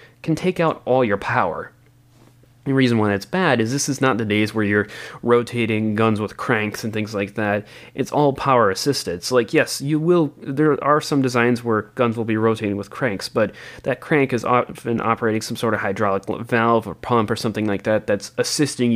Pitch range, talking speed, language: 105-130 Hz, 210 wpm, English